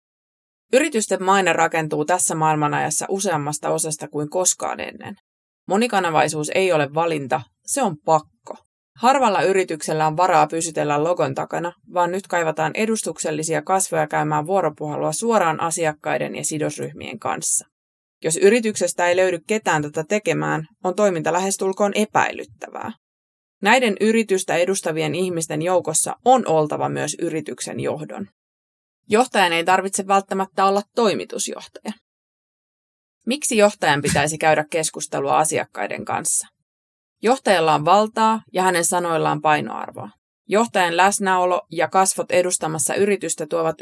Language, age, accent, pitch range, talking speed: Finnish, 20-39, native, 155-190 Hz, 115 wpm